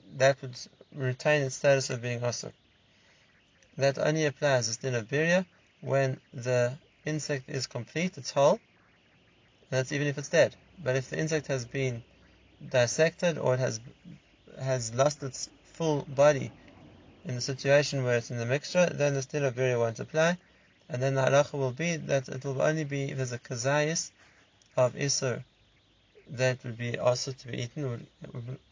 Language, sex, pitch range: English, male, 120-145 Hz